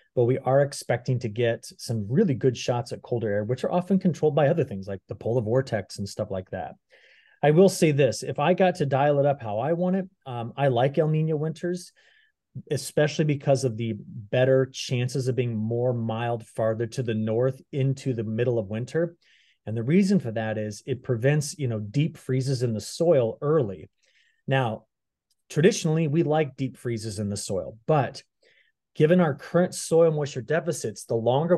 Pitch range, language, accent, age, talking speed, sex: 115-145 Hz, English, American, 30-49, 195 wpm, male